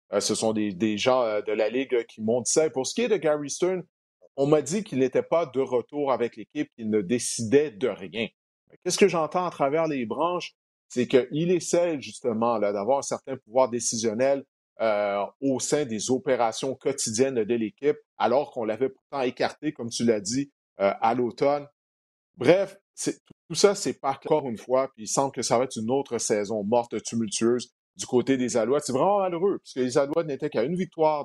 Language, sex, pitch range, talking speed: French, male, 115-150 Hz, 205 wpm